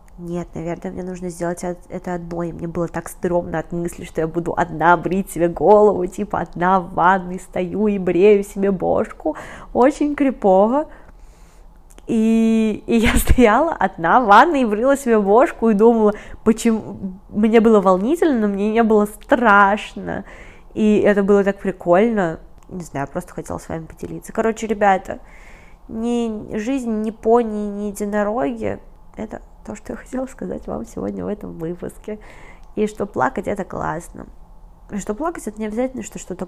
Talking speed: 160 wpm